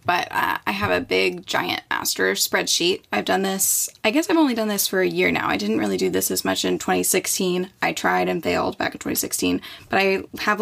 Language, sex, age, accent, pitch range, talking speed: English, female, 10-29, American, 175-235 Hz, 230 wpm